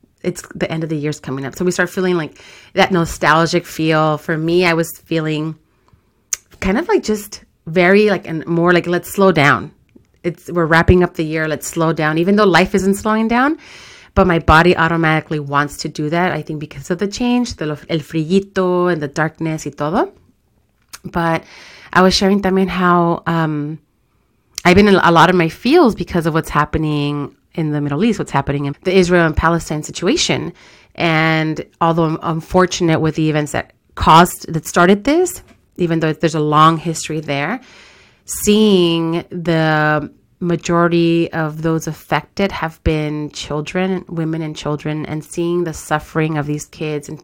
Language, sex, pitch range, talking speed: English, female, 155-180 Hz, 180 wpm